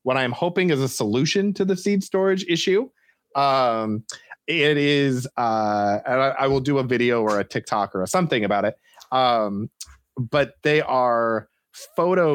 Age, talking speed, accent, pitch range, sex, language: 30-49, 170 wpm, American, 110-140 Hz, male, English